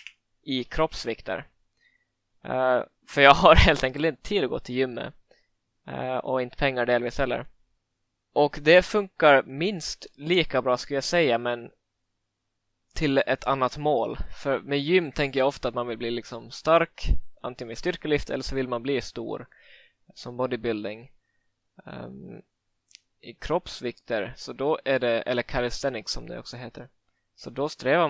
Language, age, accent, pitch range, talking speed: Swedish, 20-39, native, 115-135 Hz, 155 wpm